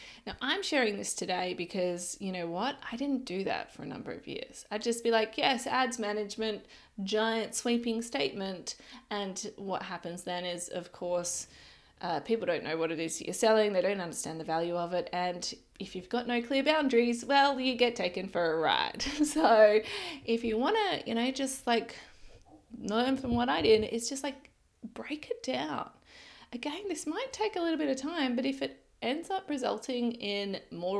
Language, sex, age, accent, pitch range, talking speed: English, female, 20-39, Australian, 185-270 Hz, 195 wpm